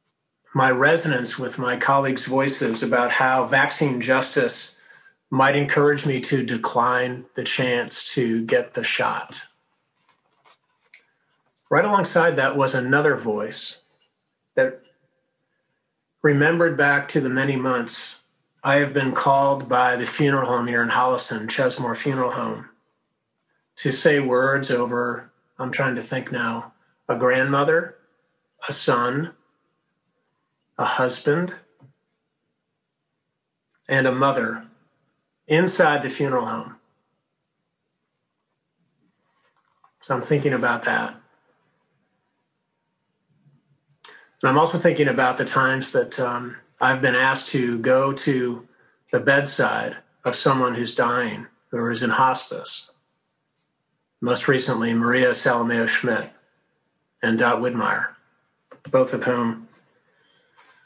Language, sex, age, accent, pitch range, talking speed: English, male, 40-59, American, 125-140 Hz, 110 wpm